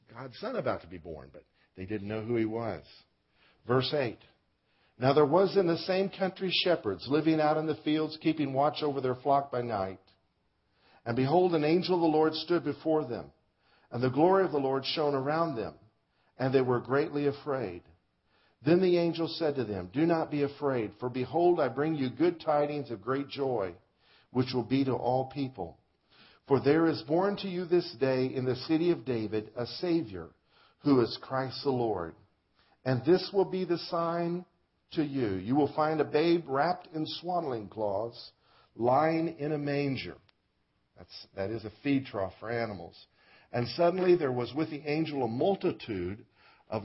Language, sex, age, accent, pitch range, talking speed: English, male, 50-69, American, 115-160 Hz, 185 wpm